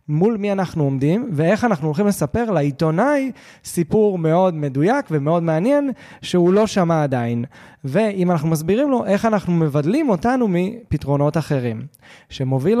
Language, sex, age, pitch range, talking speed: Hebrew, male, 20-39, 140-185 Hz, 135 wpm